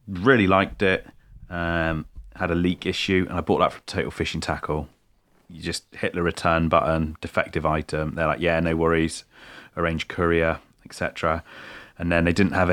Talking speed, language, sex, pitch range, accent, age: 175 wpm, English, male, 80-100 Hz, British, 30-49